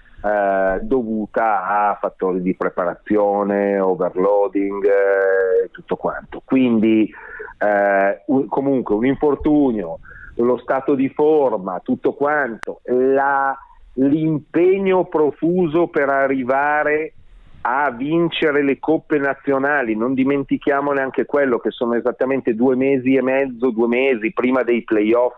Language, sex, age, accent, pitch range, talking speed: Italian, male, 40-59, native, 110-140 Hz, 110 wpm